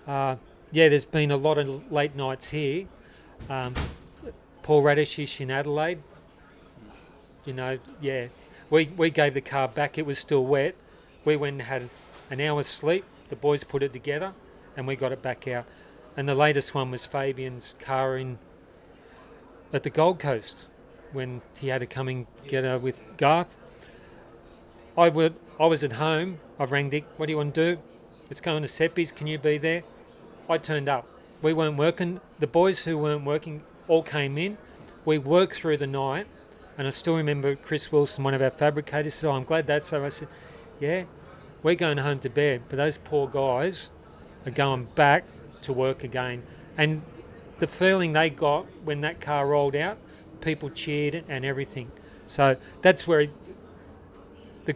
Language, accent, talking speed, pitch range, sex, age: English, Australian, 180 wpm, 135-155 Hz, male, 40-59